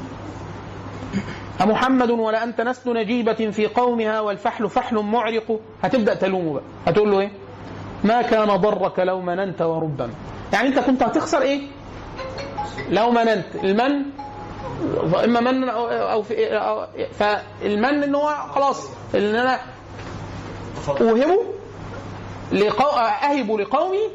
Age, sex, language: 30-49, male, Arabic